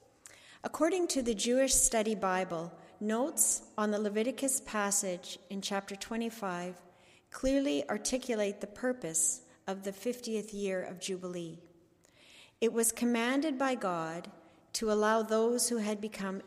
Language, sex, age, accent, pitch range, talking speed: English, female, 40-59, American, 190-240 Hz, 130 wpm